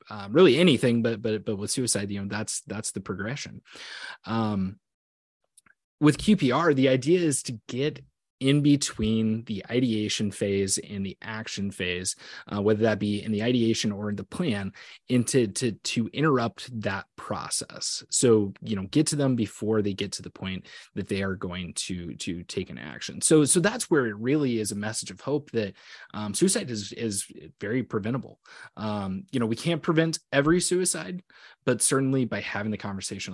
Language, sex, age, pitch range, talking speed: English, male, 20-39, 100-125 Hz, 180 wpm